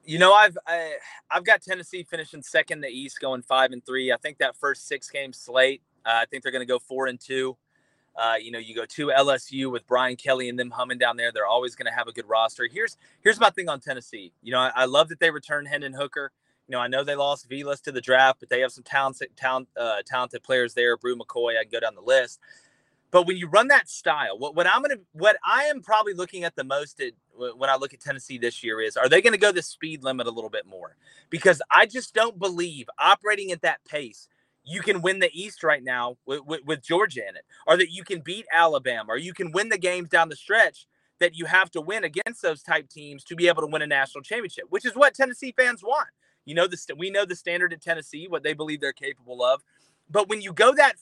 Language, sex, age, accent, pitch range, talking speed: English, male, 30-49, American, 130-185 Hz, 255 wpm